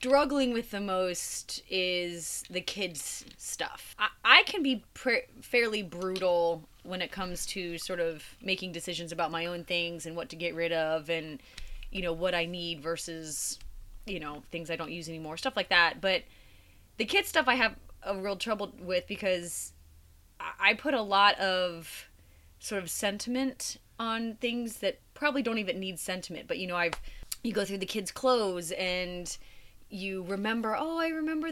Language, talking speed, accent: English, 175 wpm, American